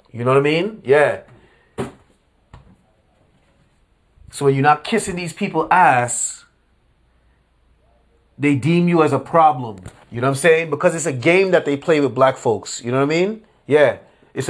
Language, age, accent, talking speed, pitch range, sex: English, 30-49, American, 175 wpm, 125-160 Hz, male